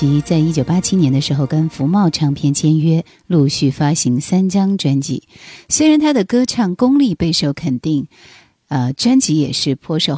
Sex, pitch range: female, 140-185 Hz